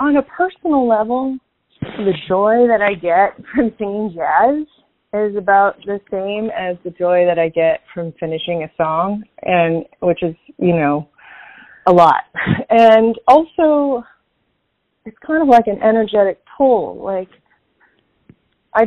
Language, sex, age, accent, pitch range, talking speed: English, female, 30-49, American, 175-225 Hz, 140 wpm